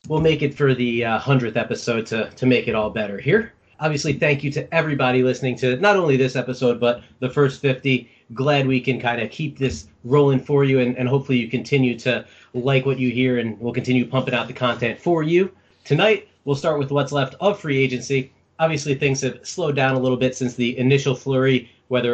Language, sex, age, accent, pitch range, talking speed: English, male, 30-49, American, 120-140 Hz, 220 wpm